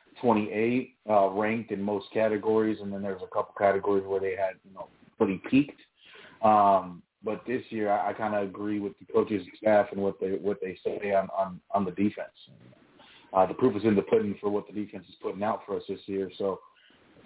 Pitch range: 100-110 Hz